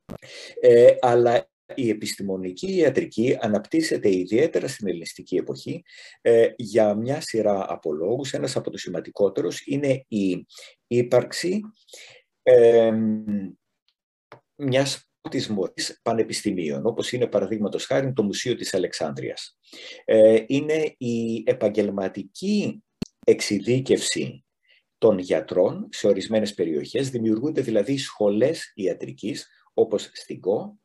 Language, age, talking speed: Greek, 50-69, 100 wpm